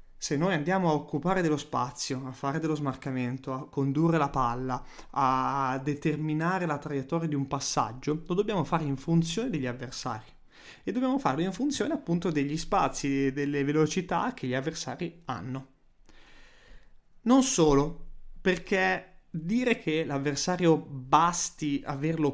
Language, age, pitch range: Italian, 20-39, 135-170 Hz